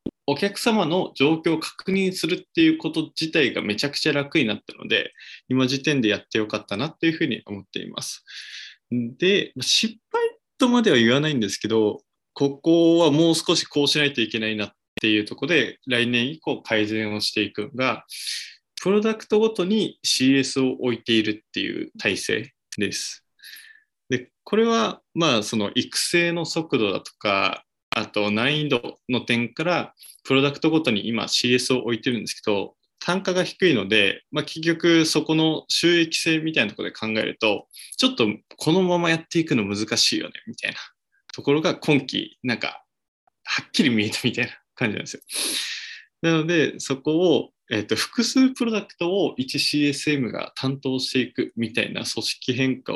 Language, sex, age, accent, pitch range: Japanese, male, 20-39, native, 125-175 Hz